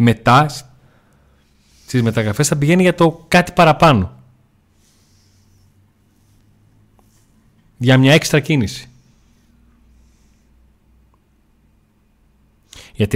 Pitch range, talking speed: 105-130 Hz, 65 wpm